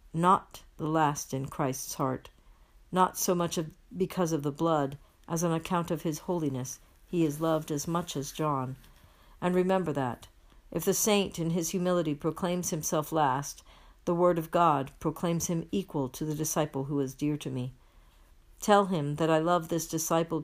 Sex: female